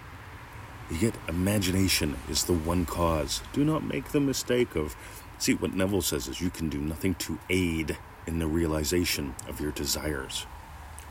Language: English